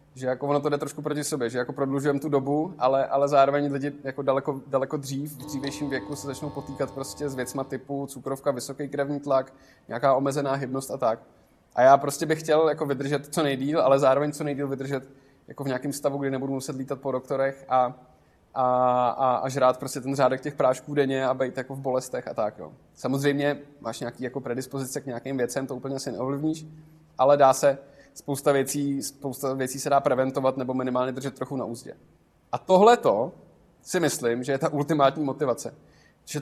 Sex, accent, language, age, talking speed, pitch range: male, native, Czech, 20-39, 200 wpm, 130-145 Hz